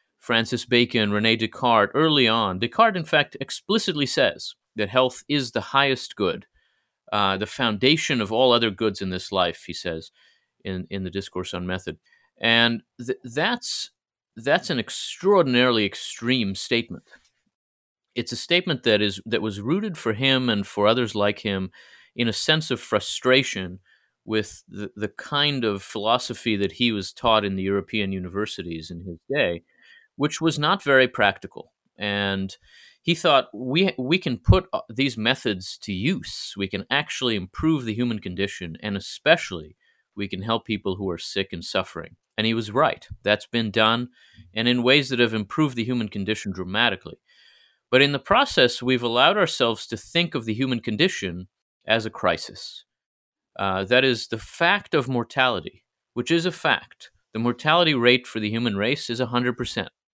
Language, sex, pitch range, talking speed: English, male, 100-130 Hz, 165 wpm